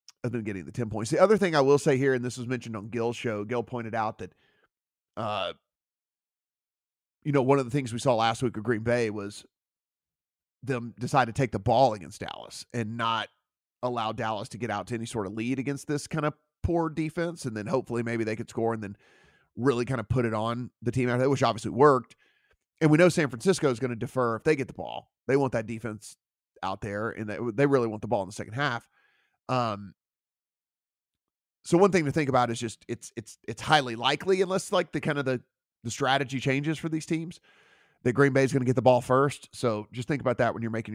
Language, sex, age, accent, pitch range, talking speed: English, male, 30-49, American, 110-140 Hz, 235 wpm